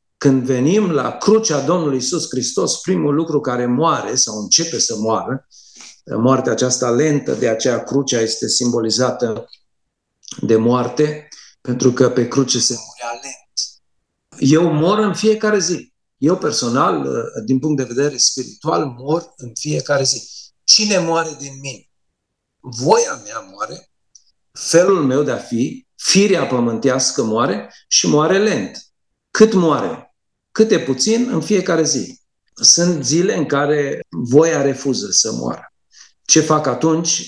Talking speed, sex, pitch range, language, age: 135 wpm, male, 125-165 Hz, Romanian, 50-69